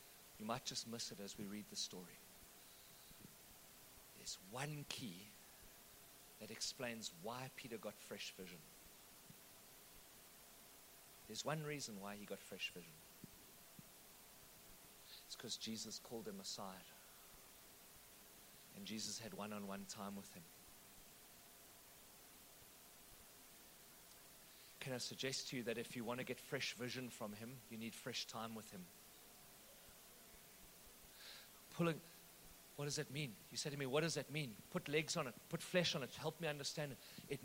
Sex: male